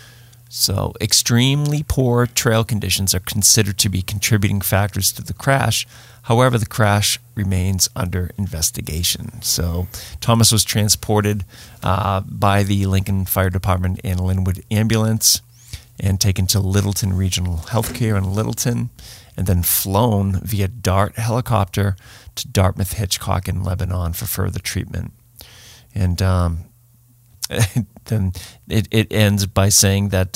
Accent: American